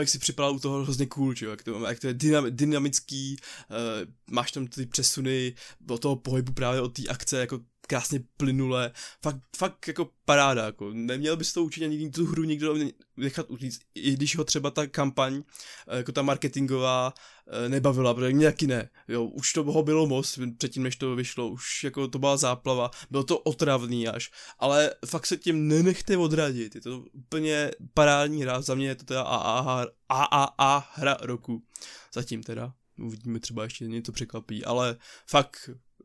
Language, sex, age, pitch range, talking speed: Czech, male, 20-39, 120-145 Hz, 175 wpm